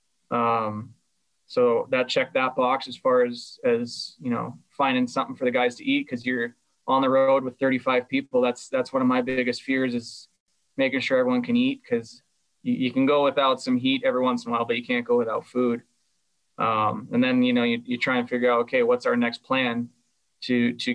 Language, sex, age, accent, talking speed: English, male, 20-39, American, 220 wpm